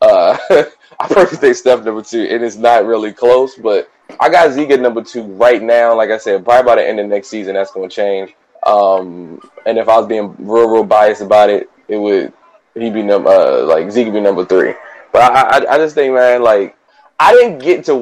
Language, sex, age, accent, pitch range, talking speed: English, male, 20-39, American, 110-145 Hz, 225 wpm